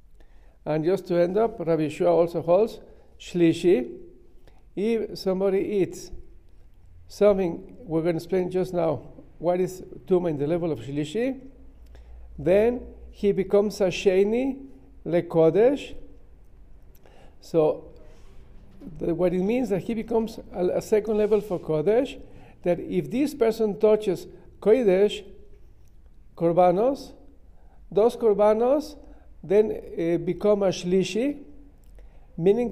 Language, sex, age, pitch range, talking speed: English, male, 50-69, 175-225 Hz, 115 wpm